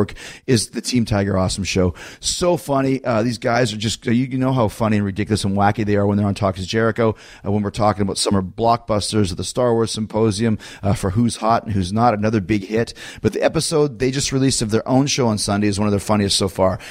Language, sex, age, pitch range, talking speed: English, male, 30-49, 105-130 Hz, 250 wpm